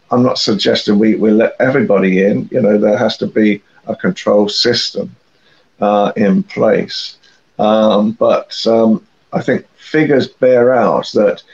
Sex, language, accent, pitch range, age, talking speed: male, English, British, 105-125 Hz, 50-69, 150 wpm